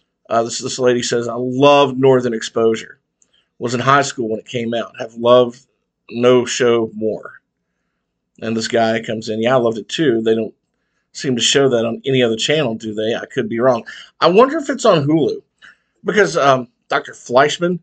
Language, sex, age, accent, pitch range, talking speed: English, male, 50-69, American, 115-145 Hz, 195 wpm